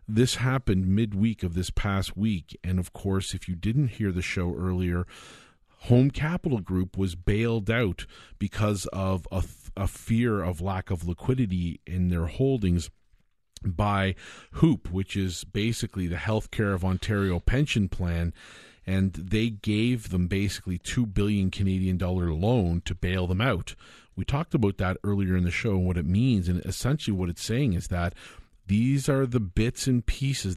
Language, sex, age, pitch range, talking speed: English, male, 40-59, 90-110 Hz, 165 wpm